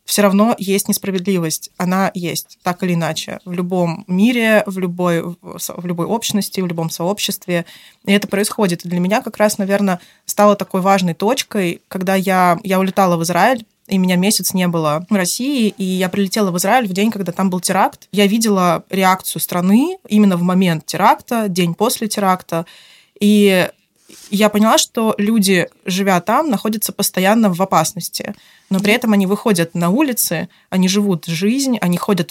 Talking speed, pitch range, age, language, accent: 165 wpm, 175-205 Hz, 20-39, Russian, native